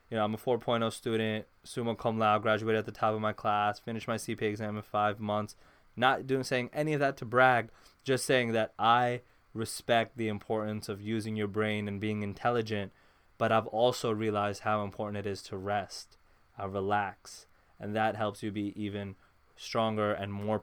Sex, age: male, 20-39